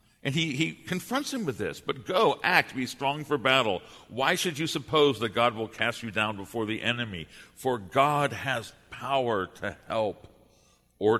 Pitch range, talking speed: 100-140 Hz, 180 wpm